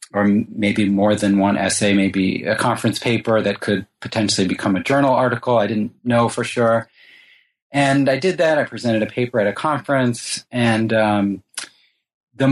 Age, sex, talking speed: 30-49, male, 175 wpm